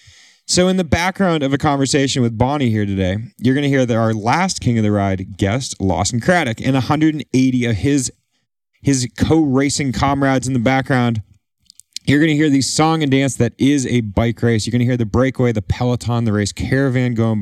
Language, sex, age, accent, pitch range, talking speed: English, male, 30-49, American, 110-140 Hz, 205 wpm